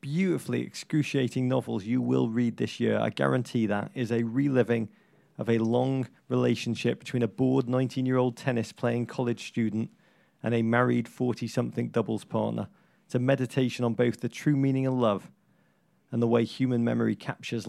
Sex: male